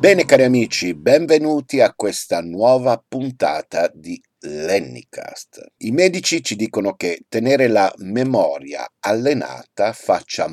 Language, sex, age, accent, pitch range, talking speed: Italian, male, 50-69, native, 85-135 Hz, 115 wpm